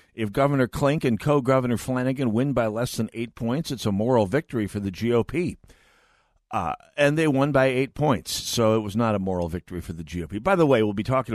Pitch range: 100-130 Hz